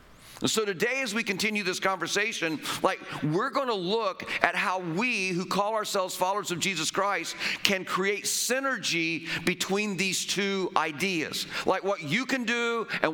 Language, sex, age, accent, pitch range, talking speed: English, male, 40-59, American, 170-210 Hz, 160 wpm